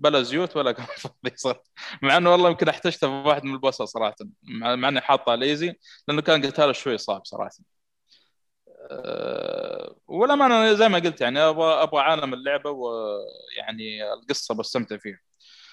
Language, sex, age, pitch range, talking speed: Arabic, male, 20-39, 125-175 Hz, 150 wpm